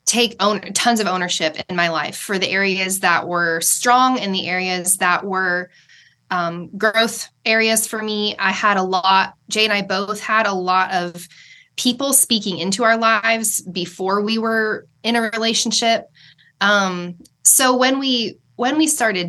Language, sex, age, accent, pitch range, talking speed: English, female, 20-39, American, 180-225 Hz, 170 wpm